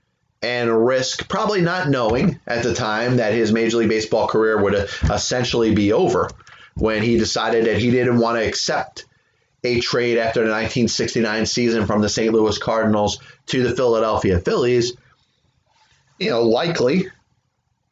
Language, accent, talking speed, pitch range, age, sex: English, American, 150 wpm, 105-125 Hz, 30-49, male